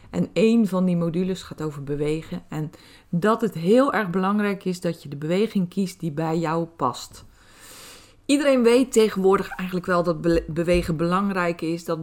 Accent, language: Dutch, Dutch